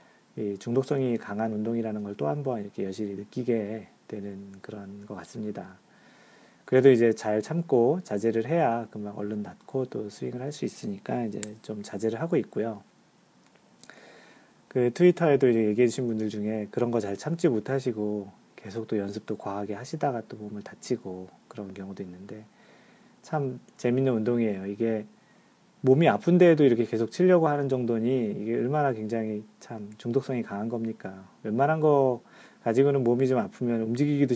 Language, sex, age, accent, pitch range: Korean, male, 40-59, native, 105-140 Hz